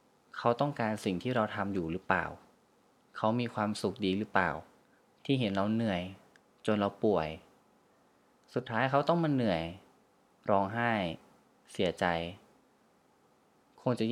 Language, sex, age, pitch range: Thai, male, 20-39, 95-120 Hz